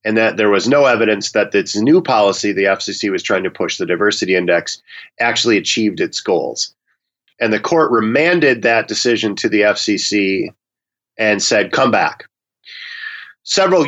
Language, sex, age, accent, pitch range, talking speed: English, male, 40-59, American, 110-140 Hz, 160 wpm